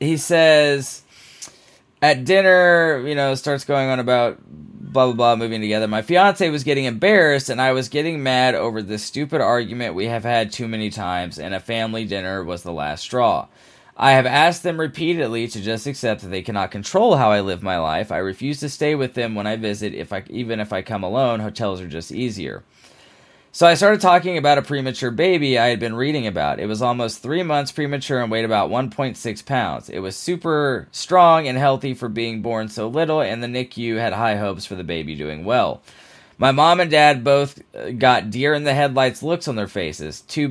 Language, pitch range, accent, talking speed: English, 105-145 Hz, American, 205 wpm